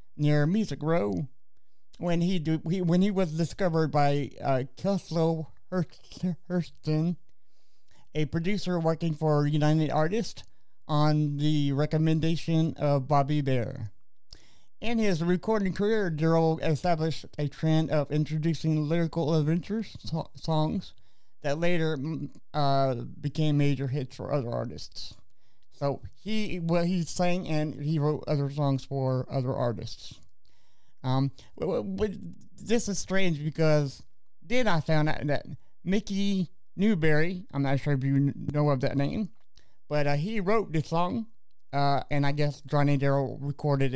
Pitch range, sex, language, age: 140-170 Hz, male, English, 50-69